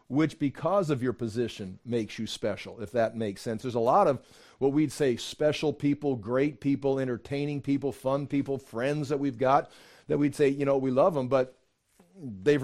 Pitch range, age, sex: 125-145 Hz, 40-59, male